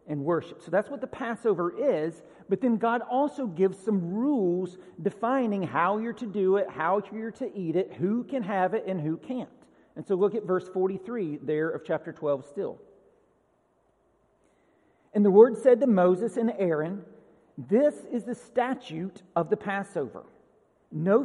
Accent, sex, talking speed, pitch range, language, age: American, male, 170 wpm, 170-235 Hz, English, 50-69